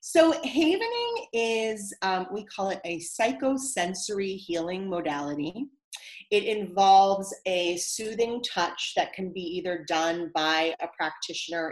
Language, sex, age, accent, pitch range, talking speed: English, female, 30-49, American, 170-205 Hz, 125 wpm